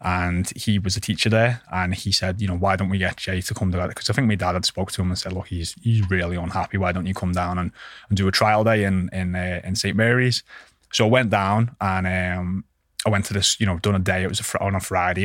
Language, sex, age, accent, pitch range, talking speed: English, male, 20-39, British, 95-110 Hz, 290 wpm